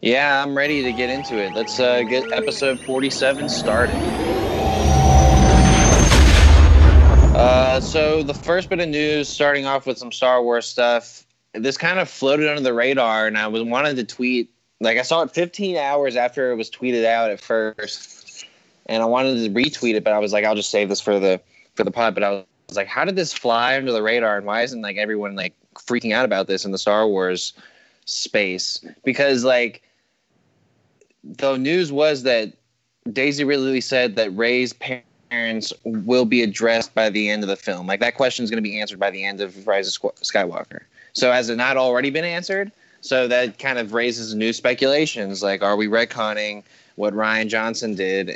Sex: male